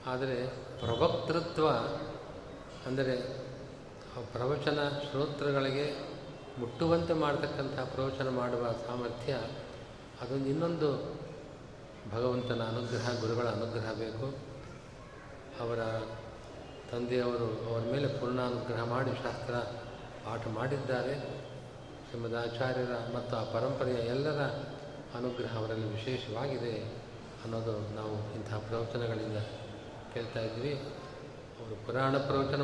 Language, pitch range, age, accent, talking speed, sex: Kannada, 115-140 Hz, 30-49, native, 85 wpm, male